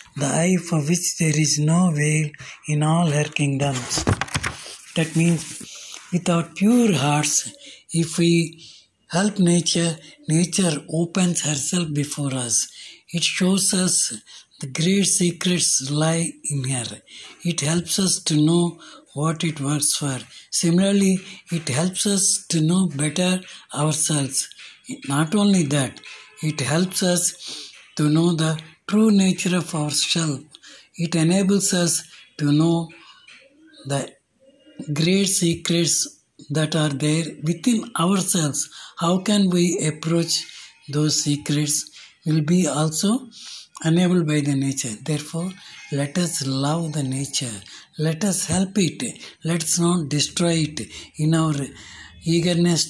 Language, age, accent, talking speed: Telugu, 60-79, native, 125 wpm